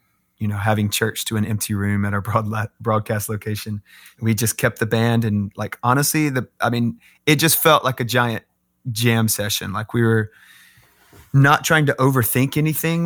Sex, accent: male, American